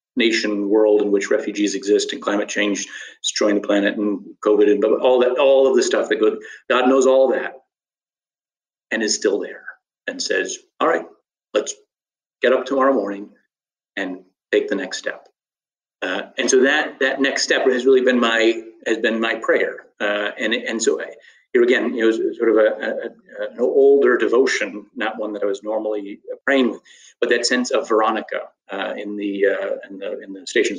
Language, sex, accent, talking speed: English, male, American, 190 wpm